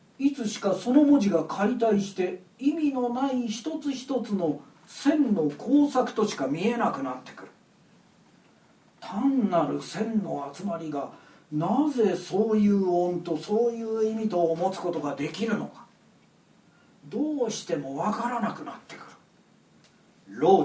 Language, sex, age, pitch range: Japanese, male, 40-59, 175-255 Hz